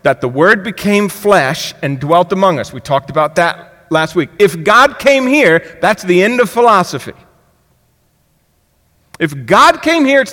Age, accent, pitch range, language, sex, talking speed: 50-69, American, 140-215 Hz, English, male, 170 wpm